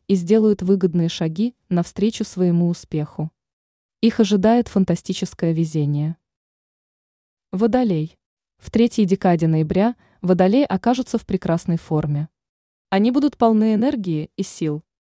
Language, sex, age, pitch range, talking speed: Russian, female, 20-39, 170-215 Hz, 105 wpm